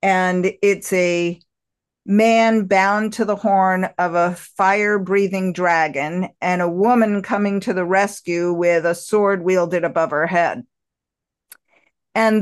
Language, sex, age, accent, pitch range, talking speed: English, female, 50-69, American, 175-210 Hz, 135 wpm